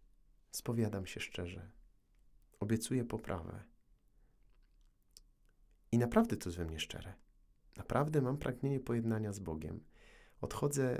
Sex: male